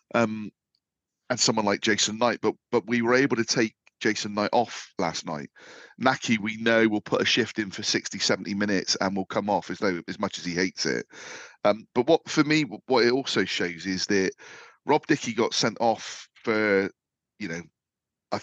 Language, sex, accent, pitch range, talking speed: English, male, British, 100-120 Hz, 200 wpm